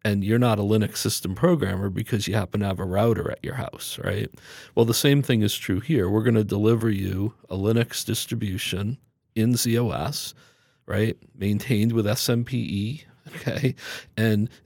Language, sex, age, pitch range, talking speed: English, male, 50-69, 100-120 Hz, 170 wpm